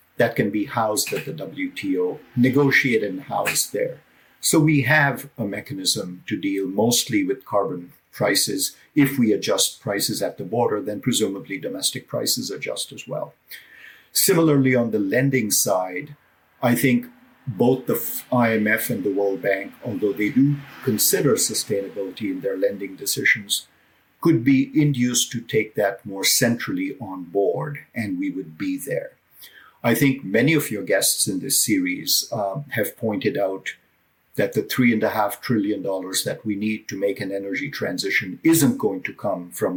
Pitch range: 105-155 Hz